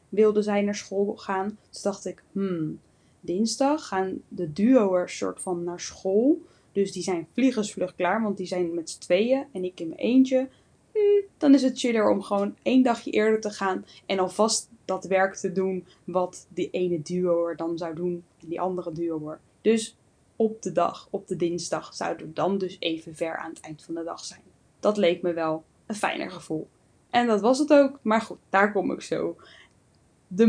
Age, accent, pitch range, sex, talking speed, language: 10-29, Dutch, 180-220 Hz, female, 195 wpm, Dutch